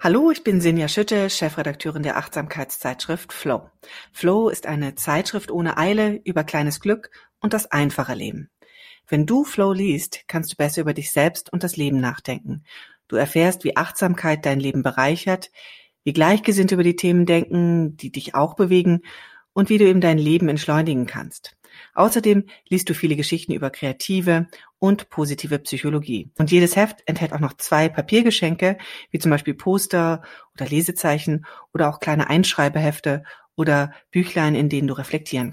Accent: German